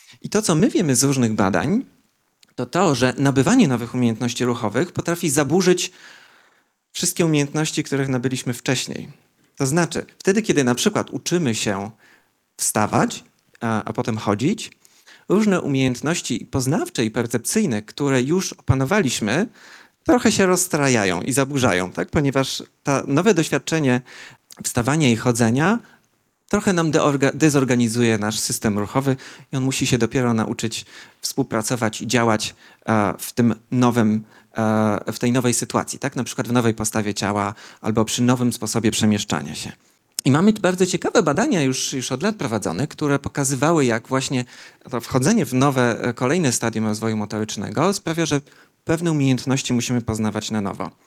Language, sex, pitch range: Polish, male, 115-145 Hz